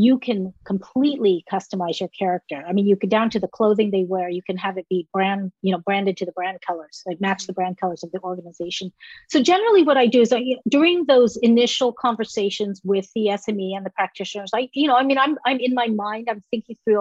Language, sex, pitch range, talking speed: English, female, 195-245 Hz, 245 wpm